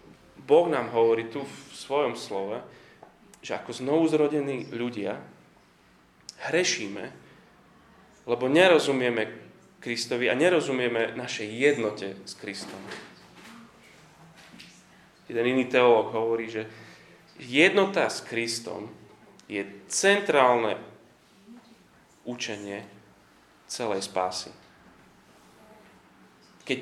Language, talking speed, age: Slovak, 80 wpm, 30-49